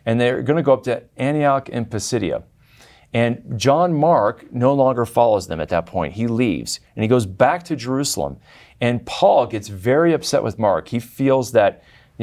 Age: 40-59